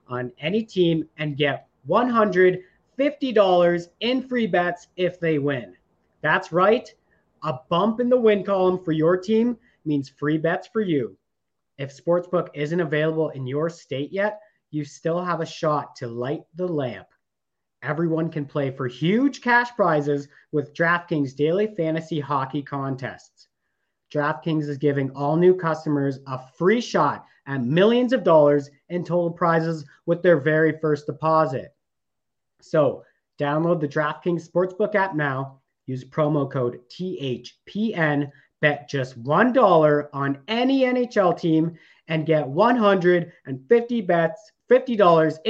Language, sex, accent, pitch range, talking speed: English, male, American, 145-180 Hz, 130 wpm